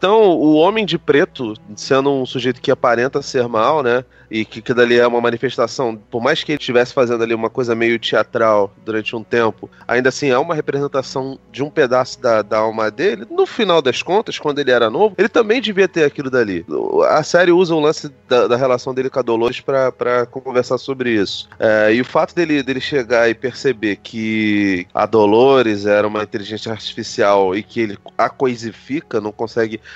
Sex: male